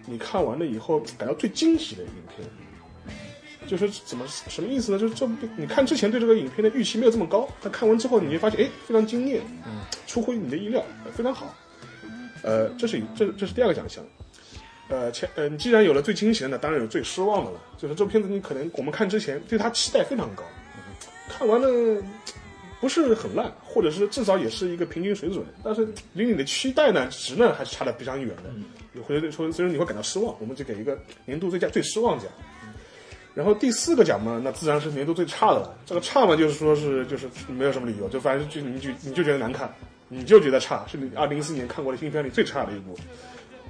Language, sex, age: Chinese, male, 30-49